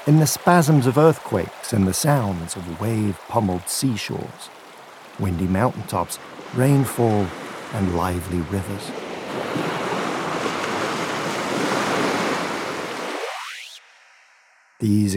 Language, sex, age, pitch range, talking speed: English, male, 50-69, 105-120 Hz, 70 wpm